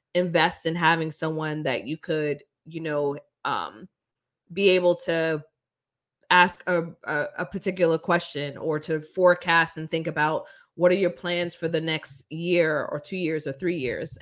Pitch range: 155-180 Hz